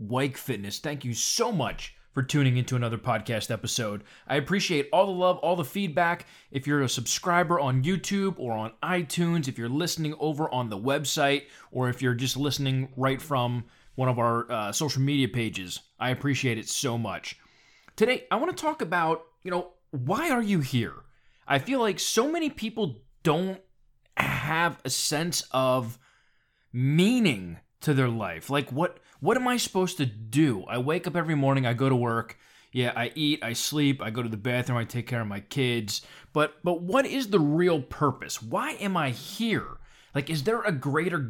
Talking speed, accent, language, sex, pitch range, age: 190 wpm, American, English, male, 125-175 Hz, 20-39